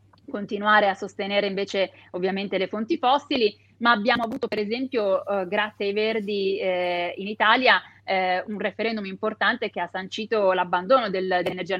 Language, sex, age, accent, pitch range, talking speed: Italian, female, 30-49, native, 185-230 Hz, 155 wpm